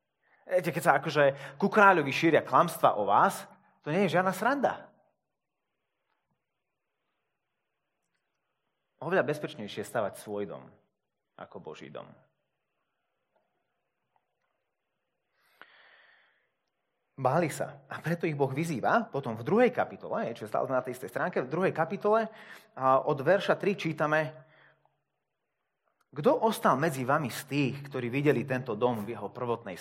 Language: Slovak